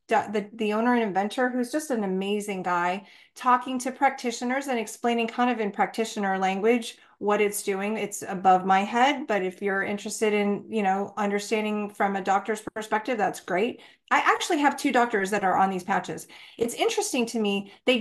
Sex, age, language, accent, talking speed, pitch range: female, 30-49, English, American, 185 wpm, 210-280 Hz